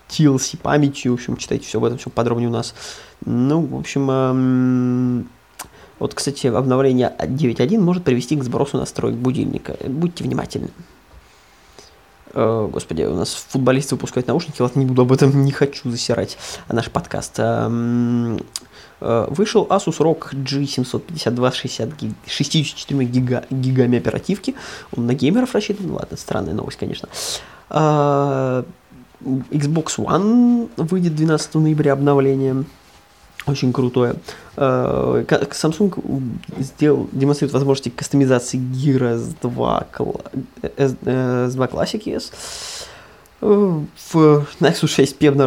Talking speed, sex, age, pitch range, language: 110 wpm, male, 20-39, 125-155 Hz, Russian